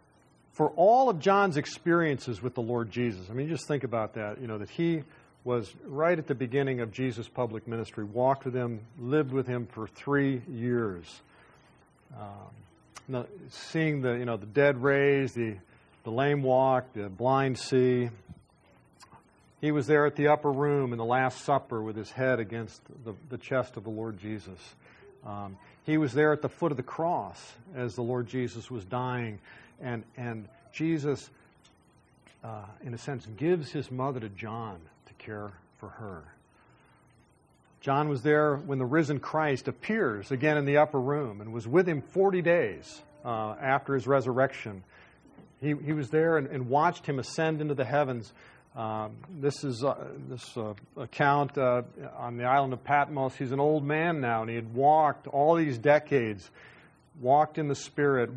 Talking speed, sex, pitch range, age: 175 wpm, male, 115-145 Hz, 50-69